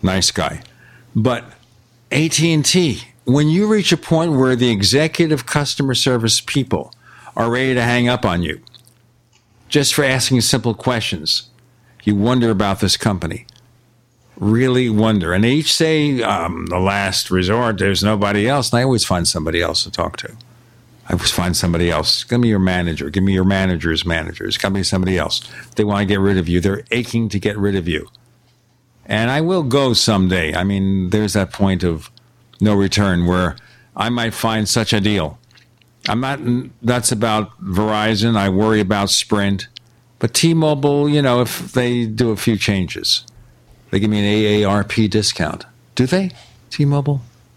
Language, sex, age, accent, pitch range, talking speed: English, male, 50-69, American, 100-125 Hz, 170 wpm